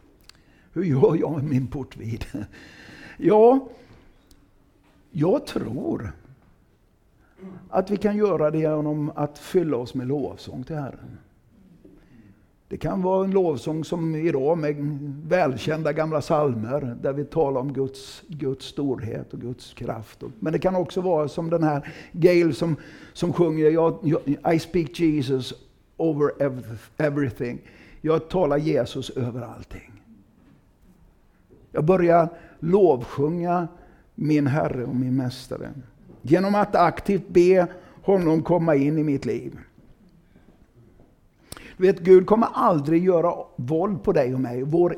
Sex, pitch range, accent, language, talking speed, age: male, 135-170 Hz, native, Swedish, 125 wpm, 60-79